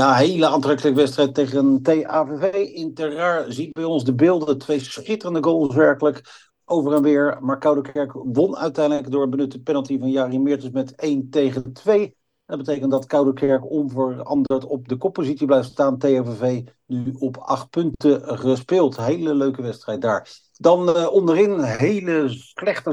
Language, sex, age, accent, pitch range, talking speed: Dutch, male, 50-69, Dutch, 130-155 Hz, 155 wpm